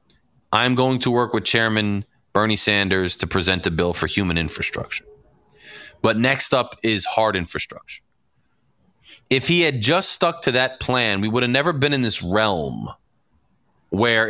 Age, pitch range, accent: 30-49, 110-155 Hz, American